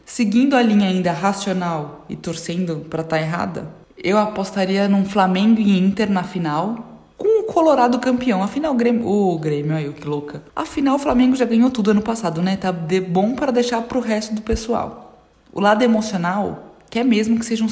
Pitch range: 185-225 Hz